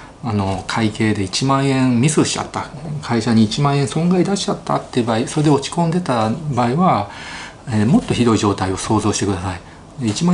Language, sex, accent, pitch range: Japanese, male, native, 105-140 Hz